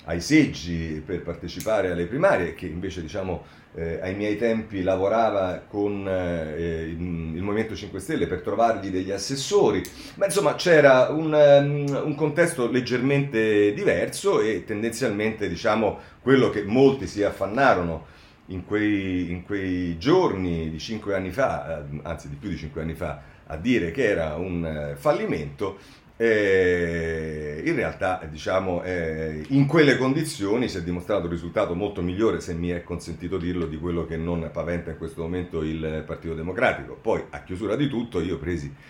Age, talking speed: 40-59, 155 wpm